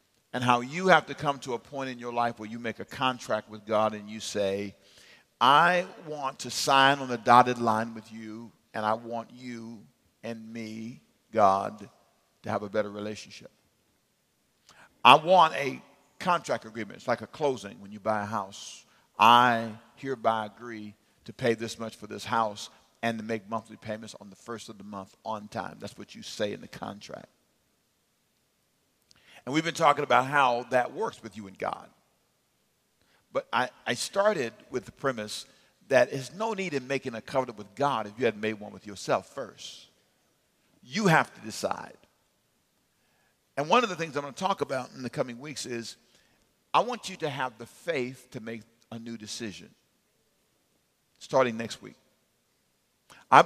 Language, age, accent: English, 50-69, American